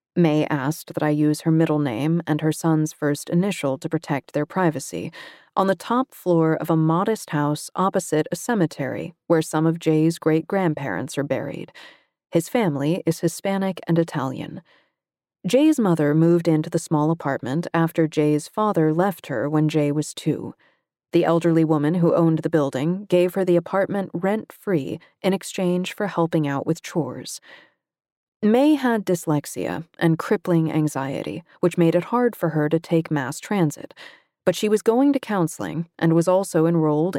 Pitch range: 155-185 Hz